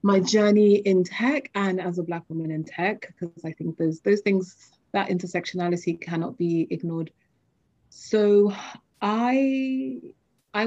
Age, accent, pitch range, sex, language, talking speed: 30-49, British, 165-195 Hz, female, English, 140 wpm